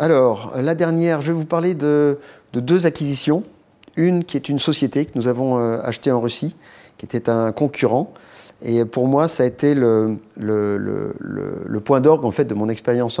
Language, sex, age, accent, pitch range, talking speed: French, male, 30-49, French, 110-140 Hz, 200 wpm